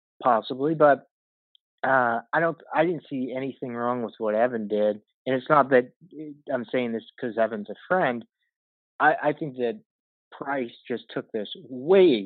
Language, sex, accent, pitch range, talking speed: English, male, American, 120-165 Hz, 165 wpm